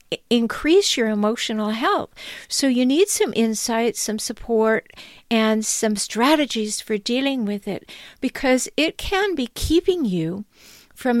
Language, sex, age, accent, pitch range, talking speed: English, female, 50-69, American, 200-260 Hz, 135 wpm